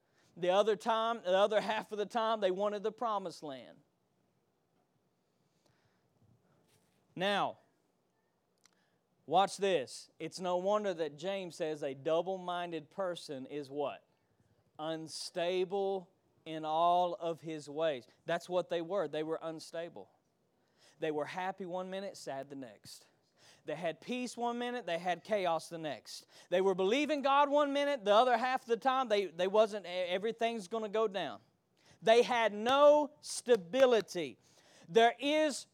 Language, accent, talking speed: English, American, 145 wpm